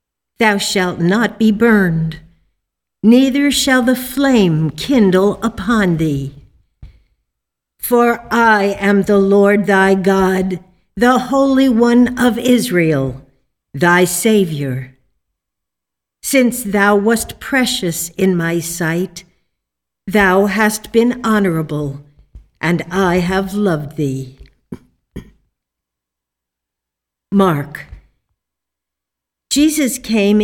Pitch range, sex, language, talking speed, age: 160-235 Hz, female, English, 90 wpm, 60-79